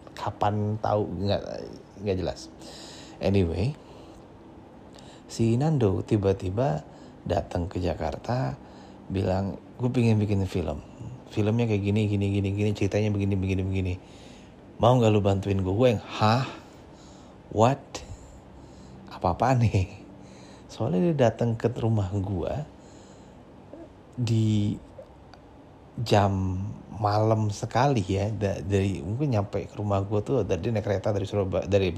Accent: native